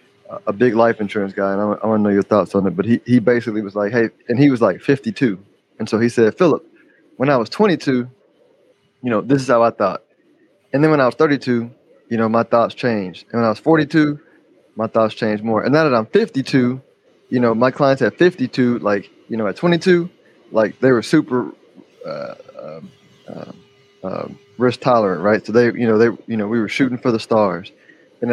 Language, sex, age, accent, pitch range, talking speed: English, male, 20-39, American, 110-125 Hz, 220 wpm